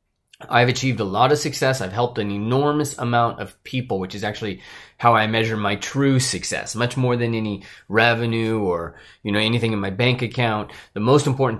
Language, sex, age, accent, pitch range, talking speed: English, male, 30-49, American, 105-135 Hz, 195 wpm